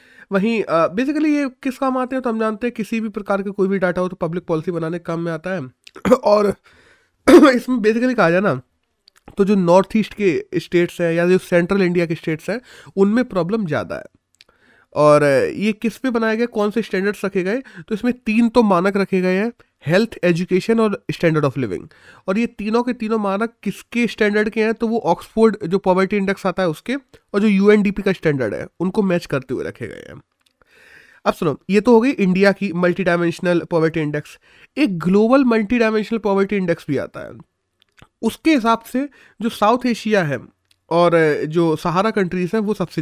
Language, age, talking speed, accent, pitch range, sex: Hindi, 20-39, 200 wpm, native, 175-225 Hz, male